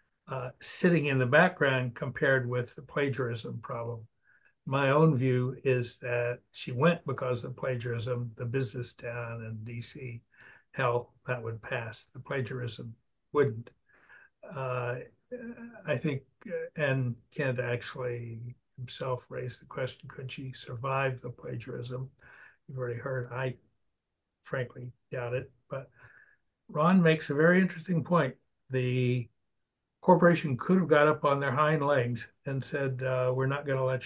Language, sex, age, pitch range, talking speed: English, male, 60-79, 125-145 Hz, 140 wpm